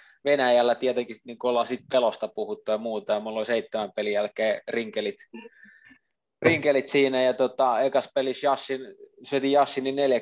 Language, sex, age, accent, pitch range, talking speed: Finnish, male, 20-39, native, 110-135 Hz, 135 wpm